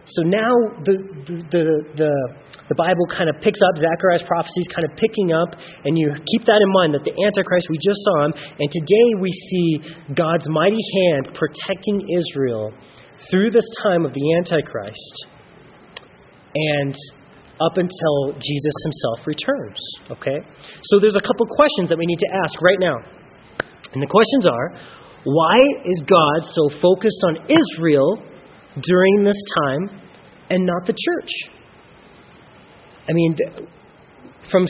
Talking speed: 150 wpm